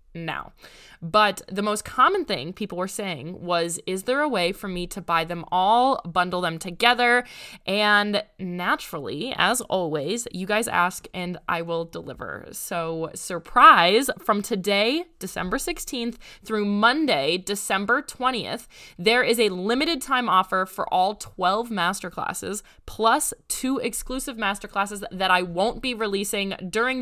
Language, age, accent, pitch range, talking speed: English, 20-39, American, 180-225 Hz, 140 wpm